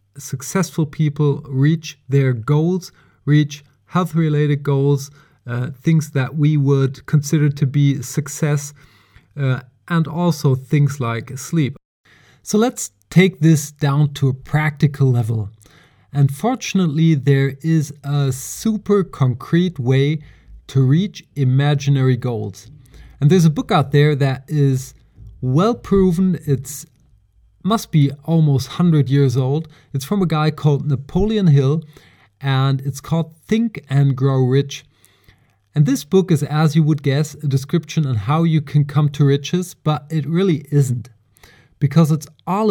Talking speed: 140 wpm